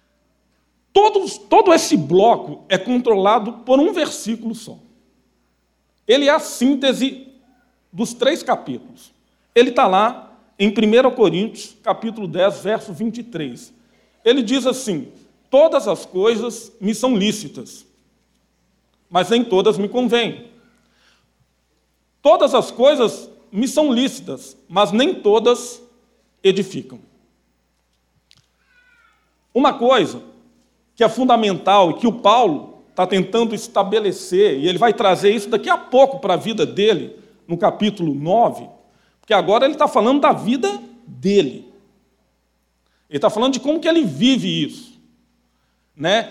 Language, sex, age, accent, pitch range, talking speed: Portuguese, male, 40-59, Brazilian, 185-255 Hz, 125 wpm